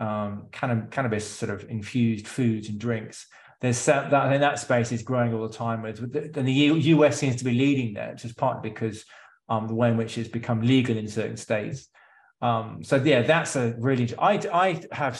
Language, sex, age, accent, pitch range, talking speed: English, male, 20-39, British, 115-145 Hz, 200 wpm